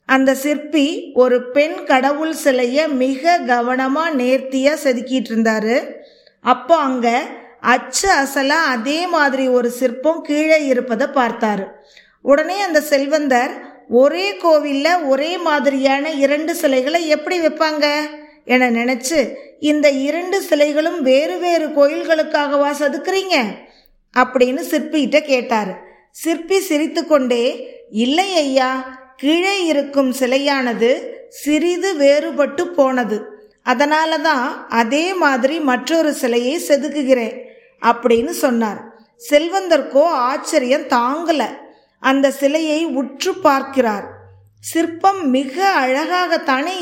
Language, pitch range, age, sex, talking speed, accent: Tamil, 255-315 Hz, 20-39, female, 95 wpm, native